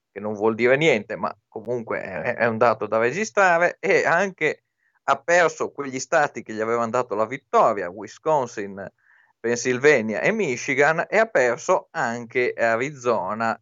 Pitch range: 110-145 Hz